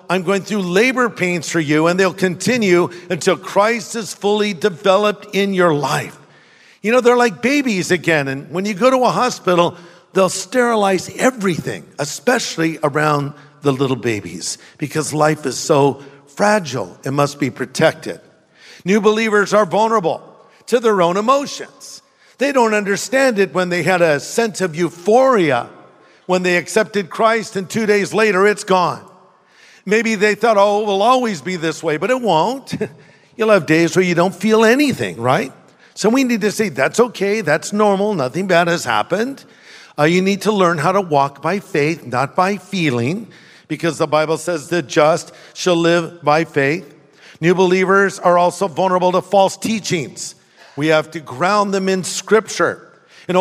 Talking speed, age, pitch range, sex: 170 wpm, 50-69, 165-210 Hz, male